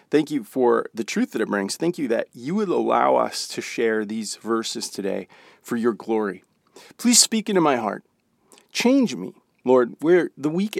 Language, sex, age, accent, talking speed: English, male, 40-59, American, 190 wpm